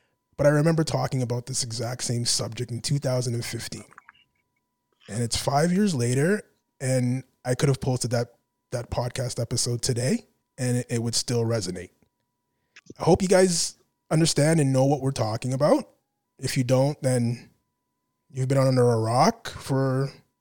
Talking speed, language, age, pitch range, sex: 155 wpm, English, 20-39, 125-150 Hz, male